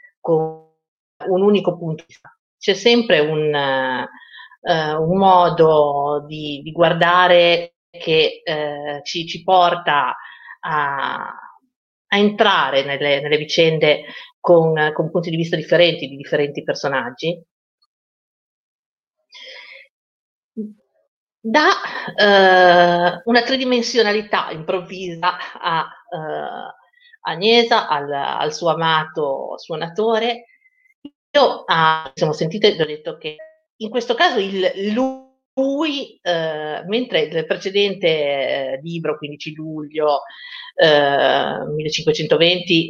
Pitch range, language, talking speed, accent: 155-225 Hz, Italian, 100 wpm, native